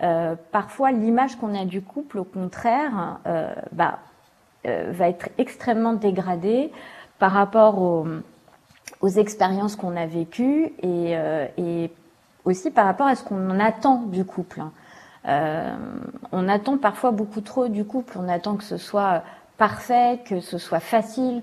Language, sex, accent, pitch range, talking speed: French, female, French, 175-240 Hz, 150 wpm